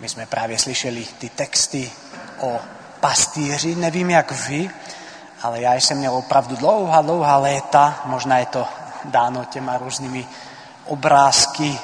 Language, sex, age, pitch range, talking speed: Czech, male, 30-49, 135-150 Hz, 130 wpm